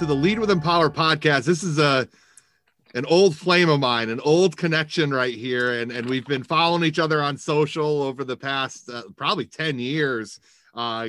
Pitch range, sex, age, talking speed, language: 130-165 Hz, male, 30-49, 200 wpm, English